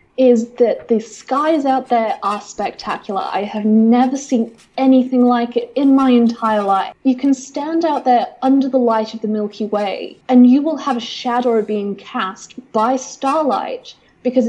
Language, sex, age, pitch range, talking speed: English, female, 10-29, 220-275 Hz, 175 wpm